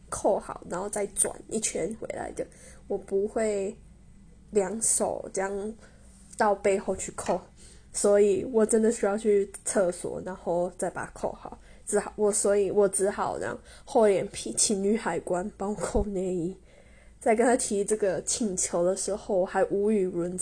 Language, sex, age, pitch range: Chinese, female, 10-29, 195-225 Hz